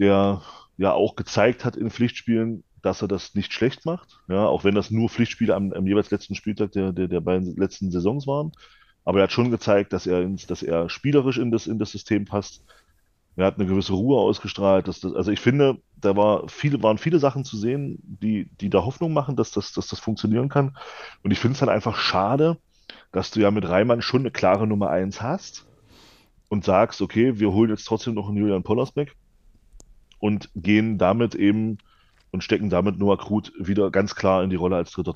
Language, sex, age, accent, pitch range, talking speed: German, male, 30-49, German, 95-110 Hz, 195 wpm